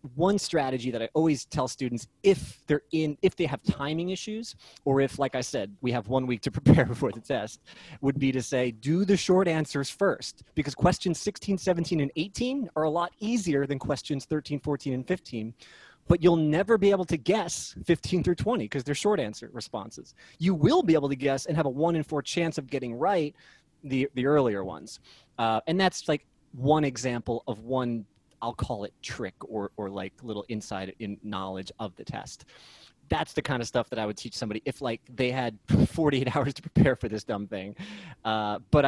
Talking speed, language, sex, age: 210 wpm, English, male, 30-49